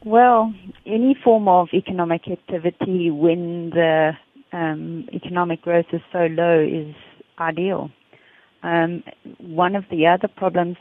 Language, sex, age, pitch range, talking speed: English, female, 40-59, 165-190 Hz, 120 wpm